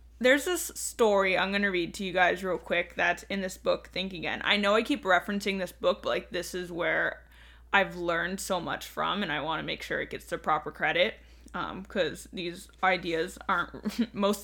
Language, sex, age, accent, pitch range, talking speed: English, female, 10-29, American, 185-220 Hz, 215 wpm